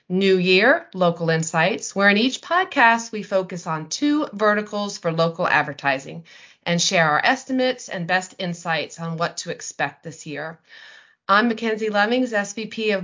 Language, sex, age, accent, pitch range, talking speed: English, female, 30-49, American, 170-225 Hz, 155 wpm